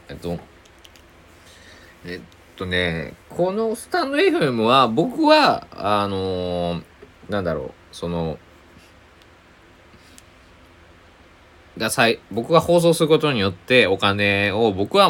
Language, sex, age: Japanese, male, 20-39